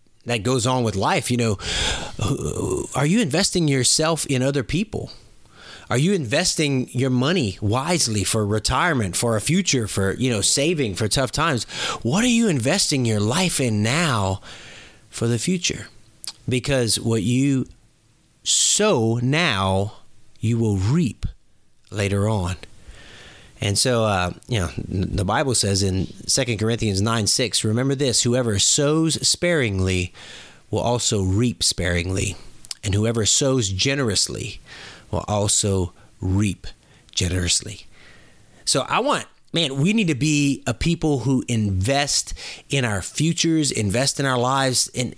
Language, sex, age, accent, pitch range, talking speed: English, male, 30-49, American, 105-140 Hz, 135 wpm